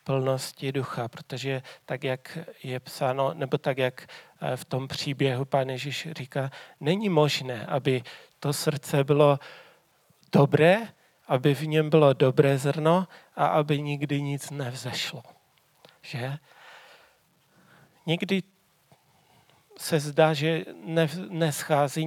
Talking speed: 105 wpm